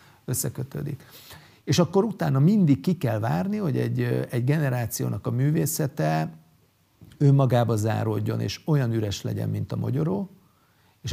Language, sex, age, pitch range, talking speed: Hungarian, male, 50-69, 110-145 Hz, 130 wpm